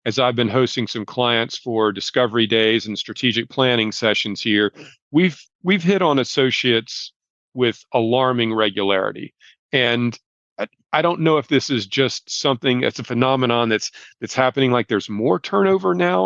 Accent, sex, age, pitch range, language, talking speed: American, male, 40-59, 110-135 Hz, English, 160 wpm